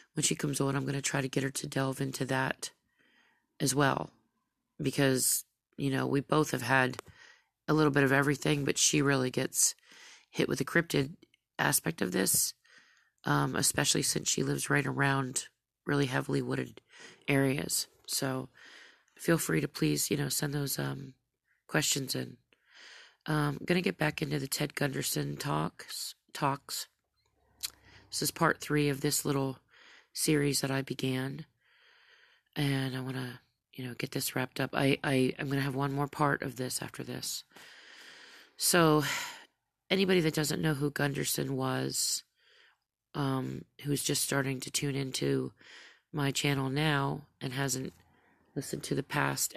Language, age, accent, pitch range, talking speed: English, 30-49, American, 130-150 Hz, 160 wpm